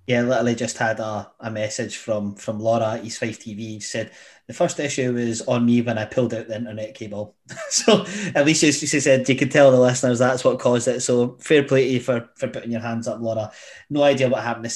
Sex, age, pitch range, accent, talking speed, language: male, 20-39, 110-130 Hz, British, 245 wpm, English